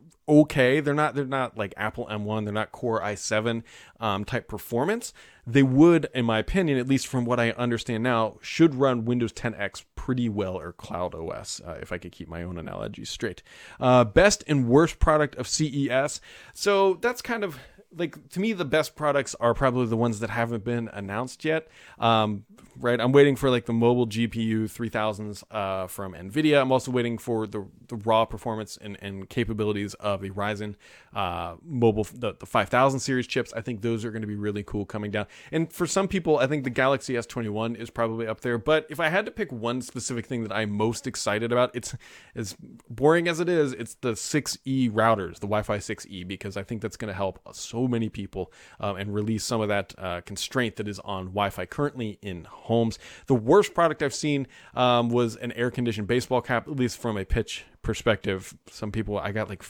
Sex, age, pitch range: male, 30-49, 105-135 Hz